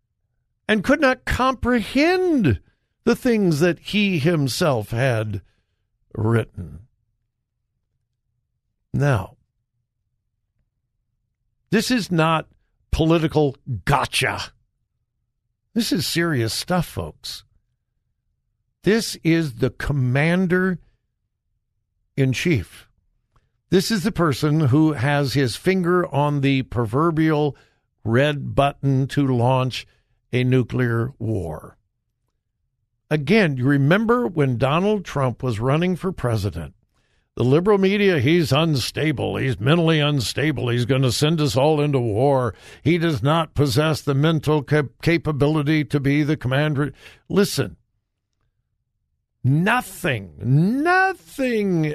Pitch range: 115-170 Hz